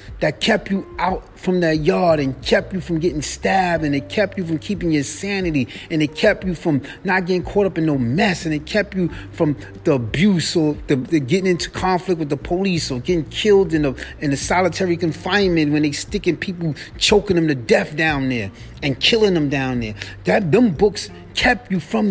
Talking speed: 215 wpm